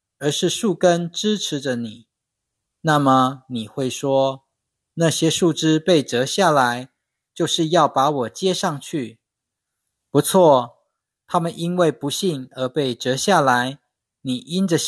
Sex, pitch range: male, 120-170 Hz